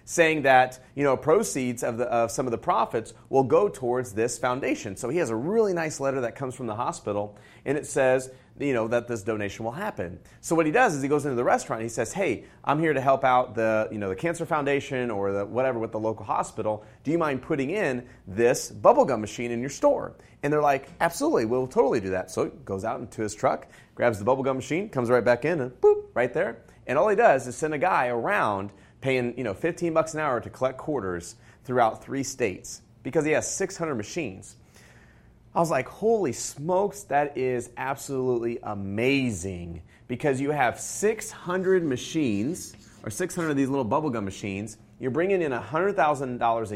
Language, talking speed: English, 205 wpm